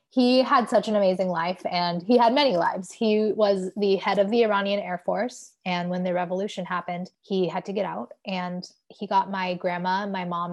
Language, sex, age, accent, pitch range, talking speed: English, female, 20-39, American, 185-220 Hz, 210 wpm